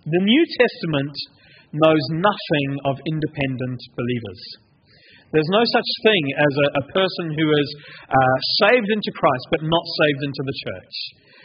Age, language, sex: 40-59, English, male